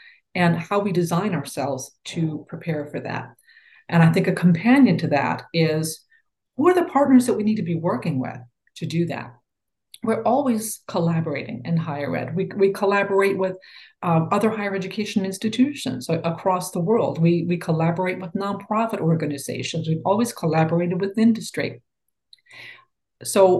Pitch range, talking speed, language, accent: 160-210 Hz, 155 wpm, English, American